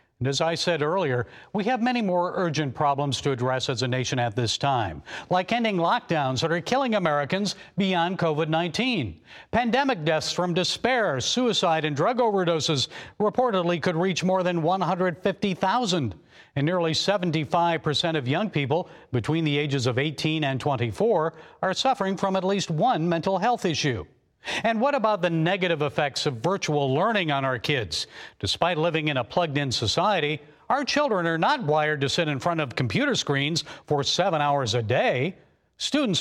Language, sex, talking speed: English, male, 165 wpm